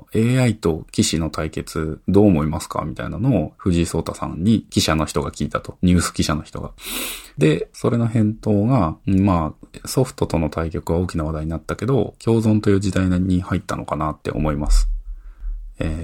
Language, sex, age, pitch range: Japanese, male, 20-39, 80-105 Hz